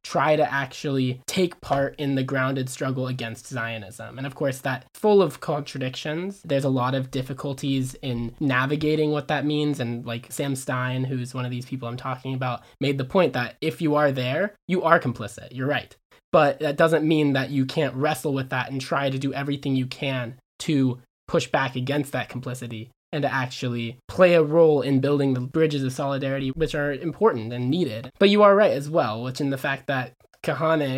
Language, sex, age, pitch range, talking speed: English, male, 20-39, 130-160 Hz, 205 wpm